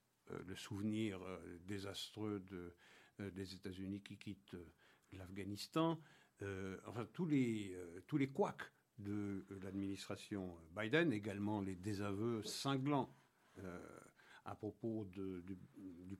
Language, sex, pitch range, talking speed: French, male, 95-120 Hz, 135 wpm